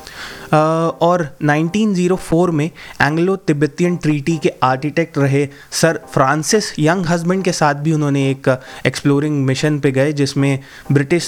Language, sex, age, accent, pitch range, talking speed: Hindi, male, 20-39, native, 130-160 Hz, 130 wpm